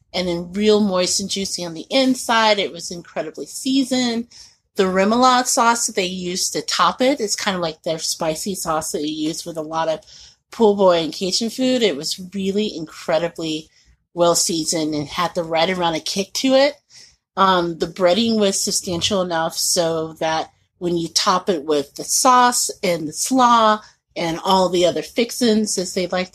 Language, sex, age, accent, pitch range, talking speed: English, female, 30-49, American, 165-205 Hz, 185 wpm